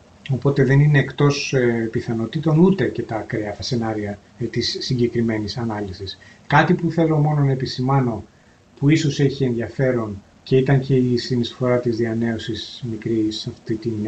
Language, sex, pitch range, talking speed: Greek, male, 115-145 Hz, 150 wpm